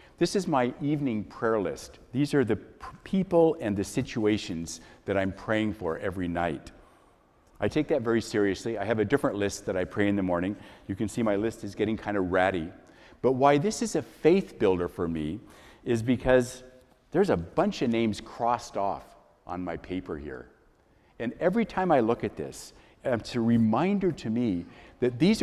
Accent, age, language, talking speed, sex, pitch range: American, 50-69, English, 190 wpm, male, 100-145 Hz